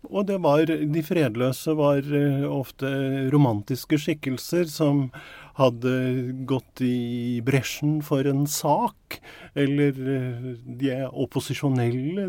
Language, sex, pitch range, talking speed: English, male, 125-150 Hz, 95 wpm